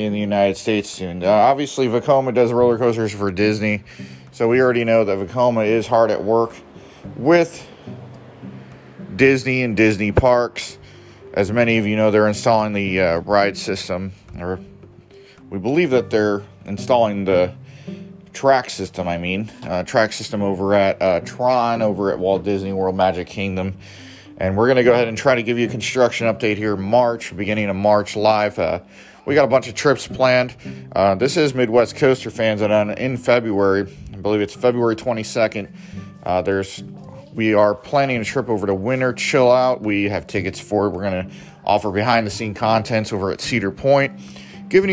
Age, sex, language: 30-49, male, English